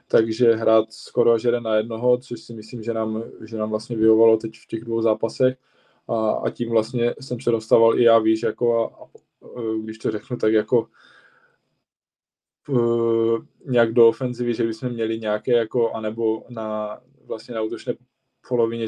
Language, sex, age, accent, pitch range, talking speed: Czech, male, 20-39, native, 110-125 Hz, 170 wpm